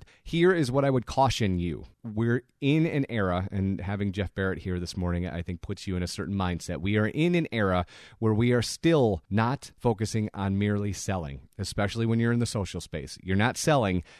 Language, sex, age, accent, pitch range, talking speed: English, male, 30-49, American, 95-115 Hz, 210 wpm